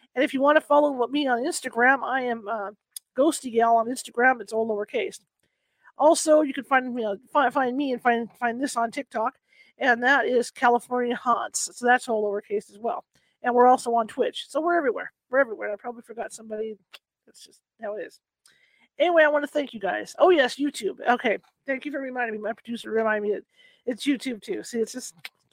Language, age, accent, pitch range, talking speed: English, 40-59, American, 230-275 Hz, 215 wpm